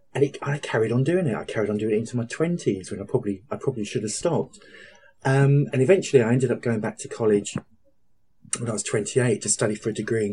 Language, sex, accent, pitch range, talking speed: English, male, British, 105-130 Hz, 250 wpm